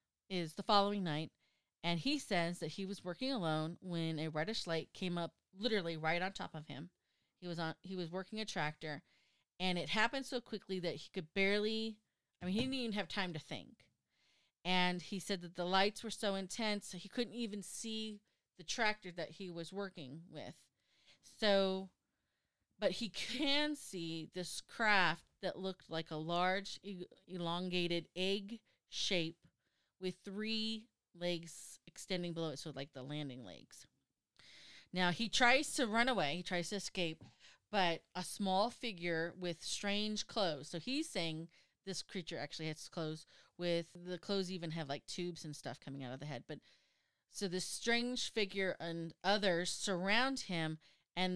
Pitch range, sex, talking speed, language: 165-205 Hz, female, 170 wpm, English